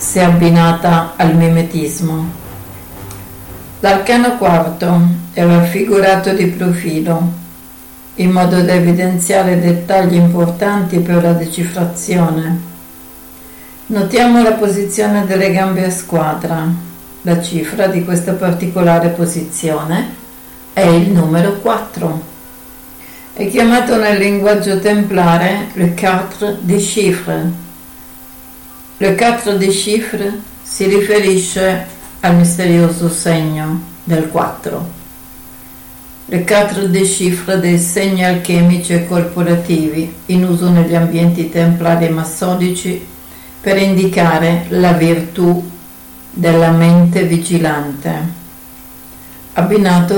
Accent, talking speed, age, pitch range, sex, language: native, 95 wpm, 60-79, 160-190 Hz, female, Italian